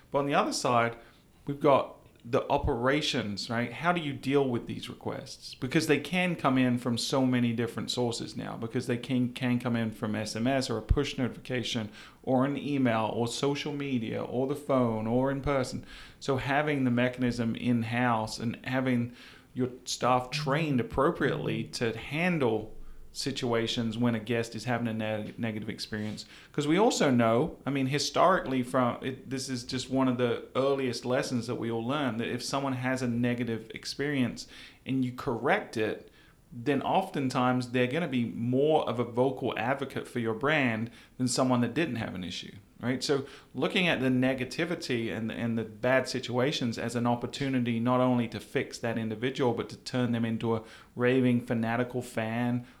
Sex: male